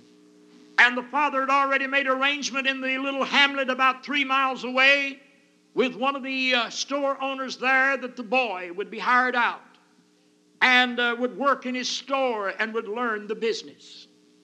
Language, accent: English, American